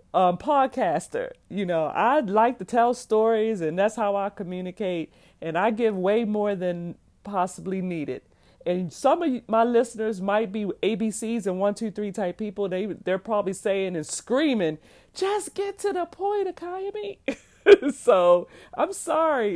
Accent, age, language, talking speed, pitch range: American, 40-59, English, 155 wpm, 175-225 Hz